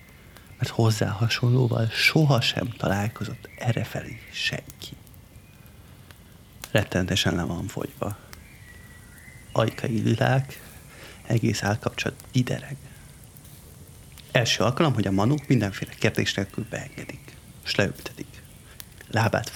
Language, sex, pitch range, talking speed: Hungarian, male, 105-140 Hz, 85 wpm